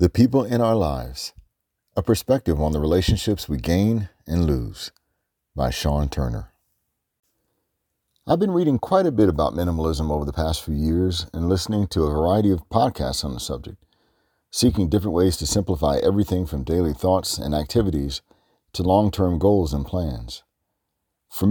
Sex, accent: male, American